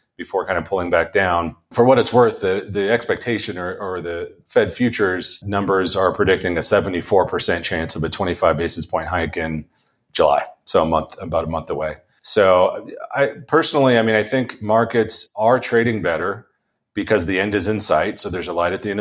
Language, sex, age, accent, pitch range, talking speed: English, male, 40-59, American, 85-110 Hz, 200 wpm